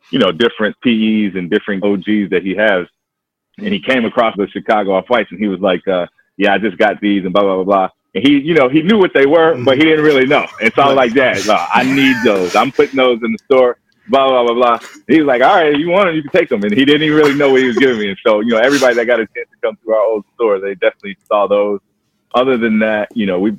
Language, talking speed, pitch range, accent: English, 285 wpm, 95-125 Hz, American